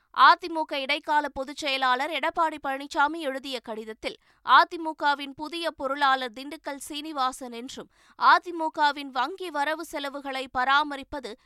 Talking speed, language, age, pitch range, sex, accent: 90 wpm, Tamil, 20-39, 260-305 Hz, female, native